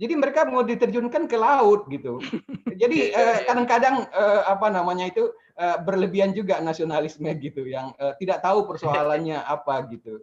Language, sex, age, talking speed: Indonesian, male, 30-49, 155 wpm